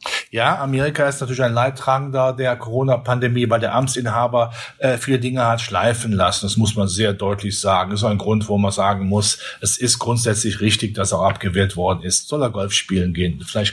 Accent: German